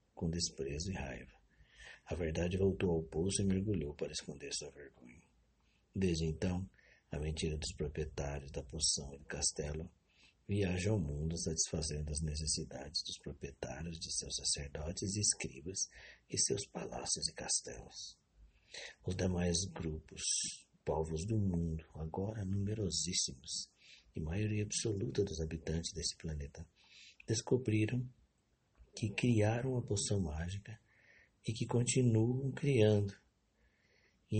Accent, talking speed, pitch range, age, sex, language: Brazilian, 120 wpm, 75-100 Hz, 60-79, male, Portuguese